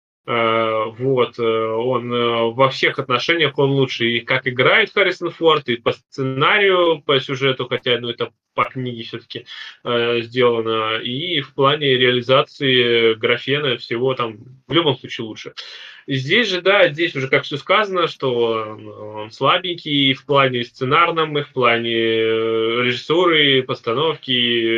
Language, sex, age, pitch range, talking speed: Russian, male, 20-39, 120-145 Hz, 135 wpm